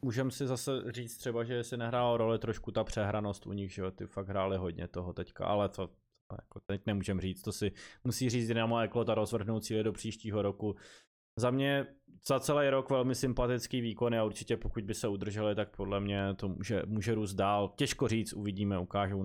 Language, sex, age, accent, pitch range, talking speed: Czech, male, 20-39, native, 110-140 Hz, 205 wpm